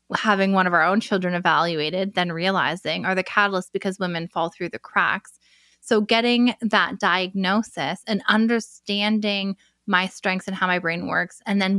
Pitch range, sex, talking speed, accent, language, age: 185-220 Hz, female, 170 wpm, American, English, 20-39